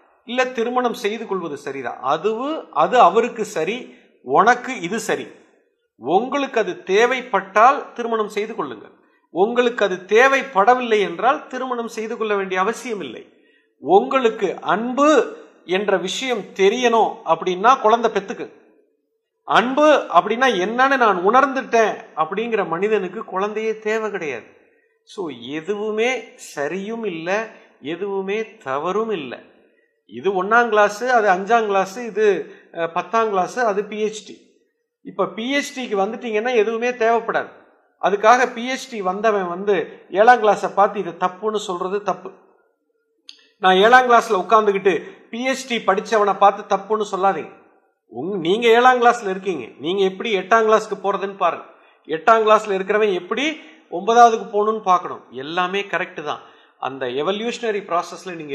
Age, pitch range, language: 50-69, 195-250 Hz, Tamil